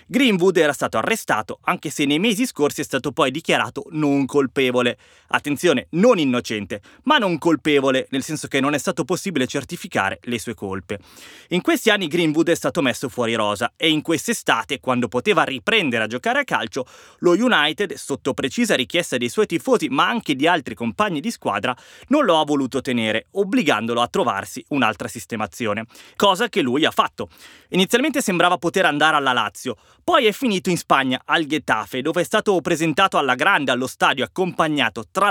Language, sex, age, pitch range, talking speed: Italian, male, 20-39, 125-190 Hz, 175 wpm